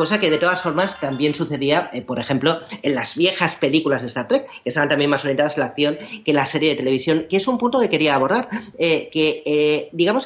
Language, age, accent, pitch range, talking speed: Spanish, 40-59, Spanish, 135-170 Hz, 240 wpm